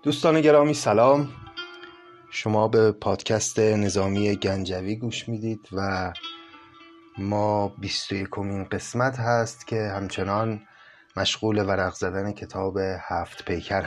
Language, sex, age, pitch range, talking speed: Persian, male, 30-49, 100-145 Hz, 100 wpm